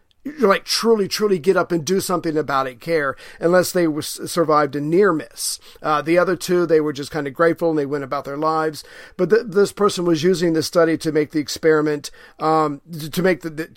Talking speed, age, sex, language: 225 wpm, 50-69, male, English